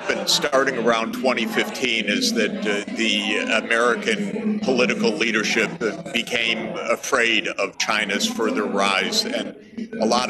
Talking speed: 115 wpm